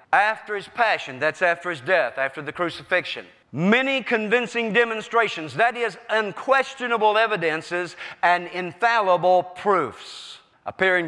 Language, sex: English, male